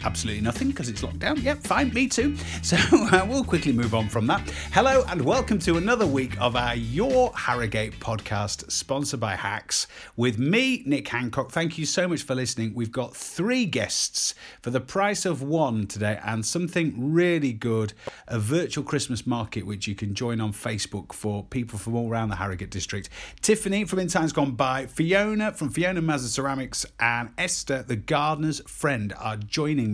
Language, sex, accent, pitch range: English, male, British, 105-145 Hz